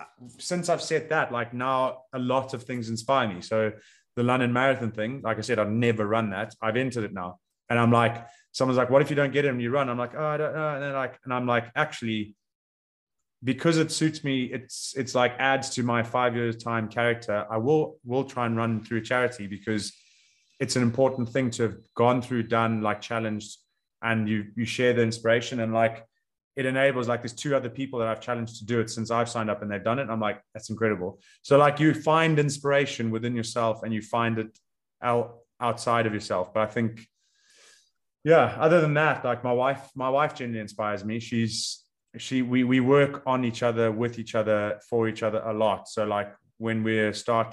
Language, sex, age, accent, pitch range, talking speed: English, male, 30-49, British, 110-130 Hz, 220 wpm